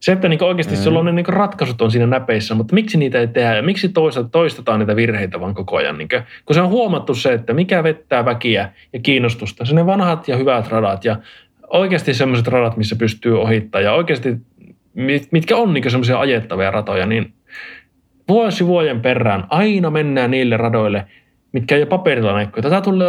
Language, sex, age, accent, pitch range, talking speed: Finnish, male, 20-39, native, 110-155 Hz, 175 wpm